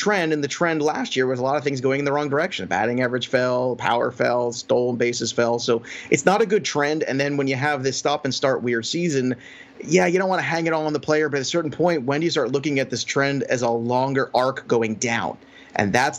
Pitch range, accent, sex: 125-155 Hz, American, male